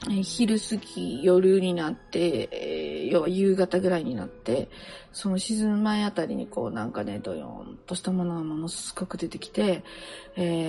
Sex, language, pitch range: female, Japanese, 175-225 Hz